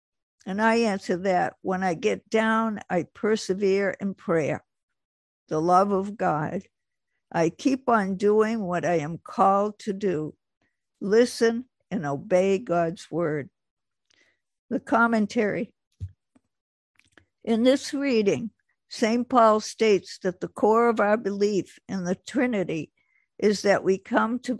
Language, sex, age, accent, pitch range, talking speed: English, female, 60-79, American, 185-225 Hz, 130 wpm